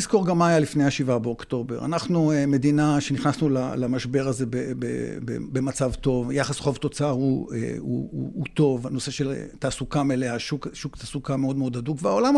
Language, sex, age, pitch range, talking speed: Hebrew, male, 50-69, 135-165 Hz, 175 wpm